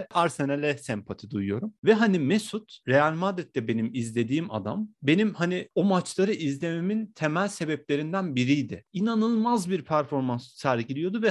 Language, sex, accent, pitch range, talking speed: Turkish, male, native, 135-195 Hz, 125 wpm